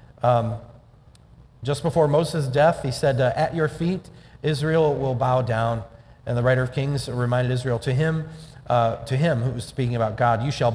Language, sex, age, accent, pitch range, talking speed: English, male, 40-59, American, 120-145 Hz, 190 wpm